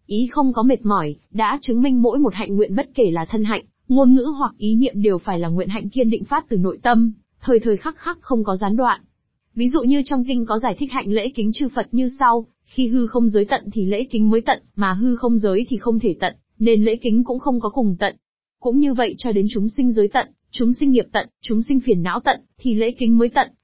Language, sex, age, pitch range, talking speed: Vietnamese, female, 20-39, 200-255 Hz, 265 wpm